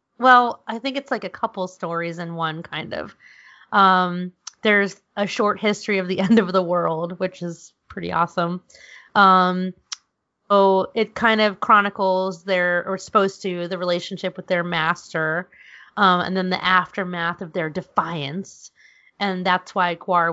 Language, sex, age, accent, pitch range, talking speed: English, female, 30-49, American, 180-210 Hz, 160 wpm